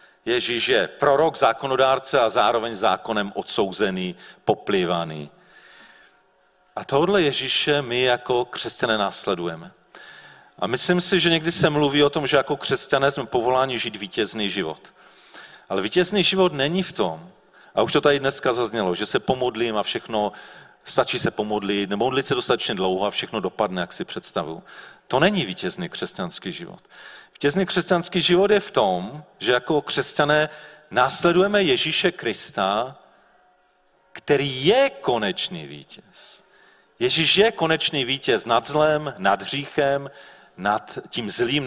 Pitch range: 120-180 Hz